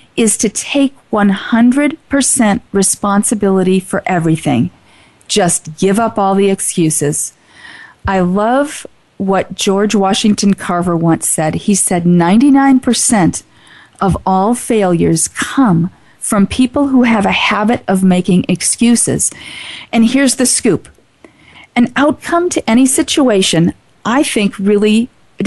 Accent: American